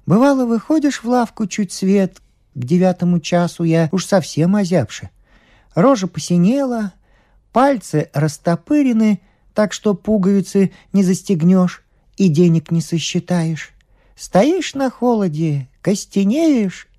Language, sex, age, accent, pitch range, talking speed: Russian, male, 50-69, native, 140-205 Hz, 105 wpm